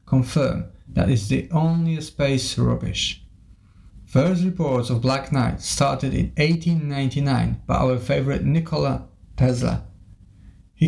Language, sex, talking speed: Polish, male, 115 wpm